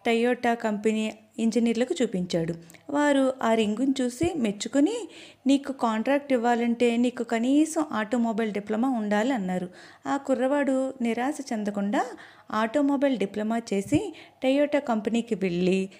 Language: Telugu